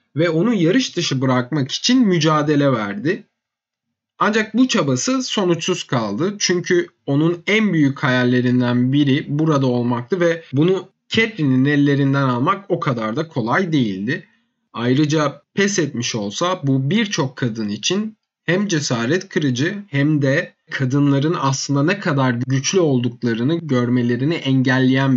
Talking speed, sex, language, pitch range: 125 wpm, male, Turkish, 130-180 Hz